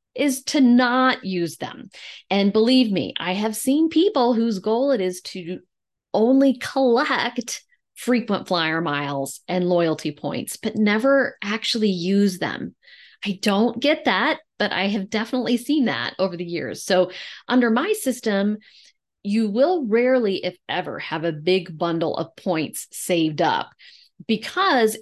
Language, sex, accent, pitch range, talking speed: English, female, American, 185-250 Hz, 145 wpm